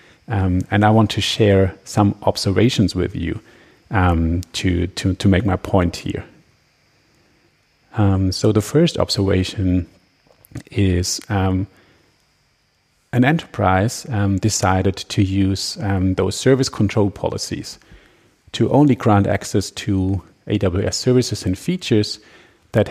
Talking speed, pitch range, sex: 120 wpm, 95-110 Hz, male